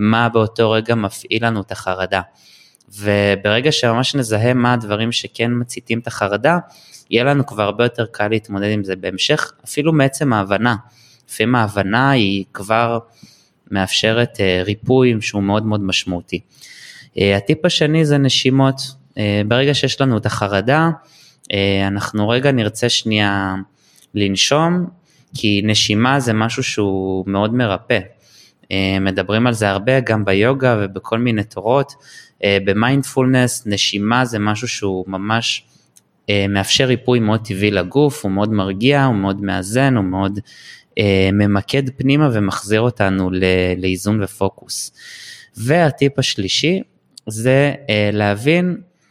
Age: 20-39